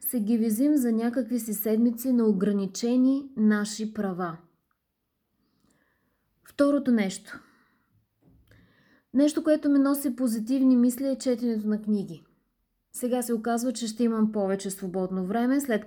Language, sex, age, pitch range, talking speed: Bulgarian, female, 20-39, 200-255 Hz, 125 wpm